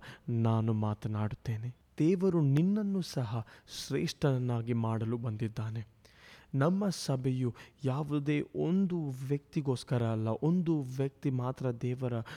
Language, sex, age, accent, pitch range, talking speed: Kannada, male, 20-39, native, 115-145 Hz, 85 wpm